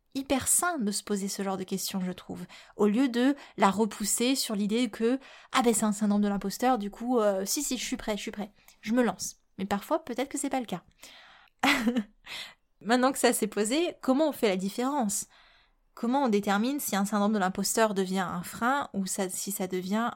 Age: 20-39